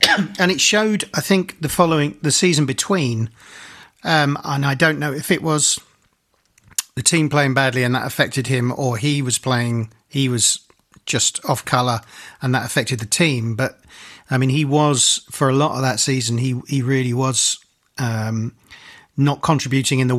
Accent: British